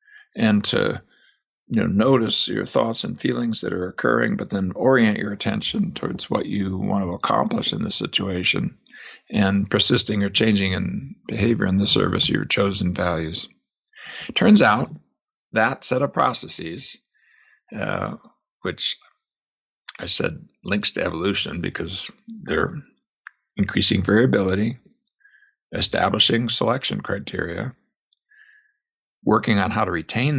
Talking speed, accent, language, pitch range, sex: 120 wpm, American, English, 100-160 Hz, male